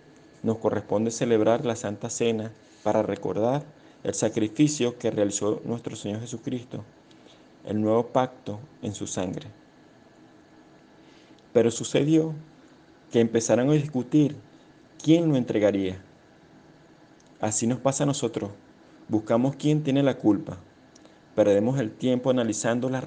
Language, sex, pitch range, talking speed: Spanish, male, 110-140 Hz, 115 wpm